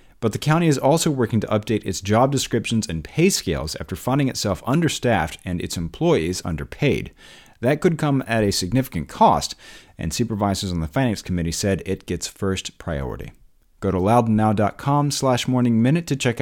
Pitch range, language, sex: 95-150 Hz, English, male